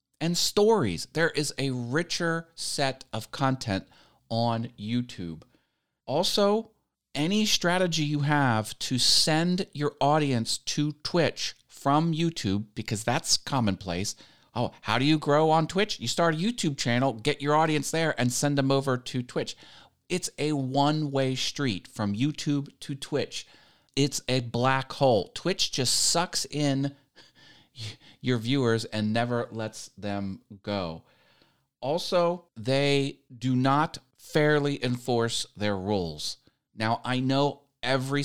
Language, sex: English, male